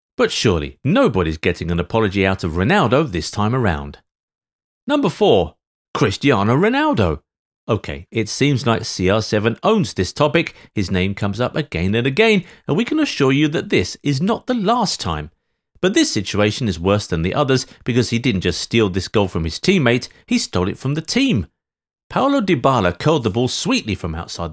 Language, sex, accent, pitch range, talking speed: English, male, British, 95-155 Hz, 185 wpm